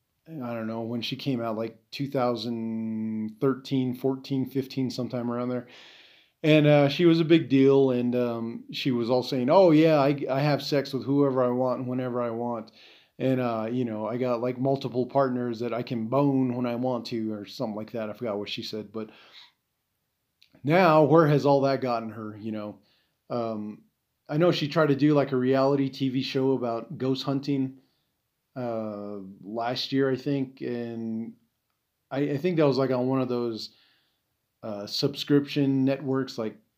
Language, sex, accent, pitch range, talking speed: English, male, American, 115-140 Hz, 185 wpm